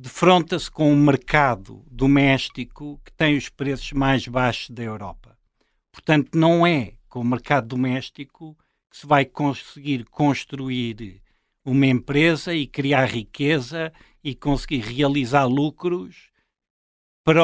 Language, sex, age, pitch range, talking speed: English, male, 60-79, 130-175 Hz, 120 wpm